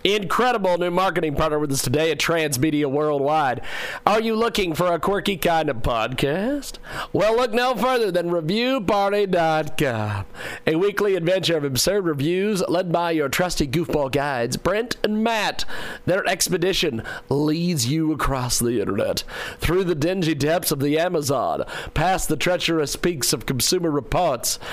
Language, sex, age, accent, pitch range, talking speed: English, male, 40-59, American, 145-185 Hz, 150 wpm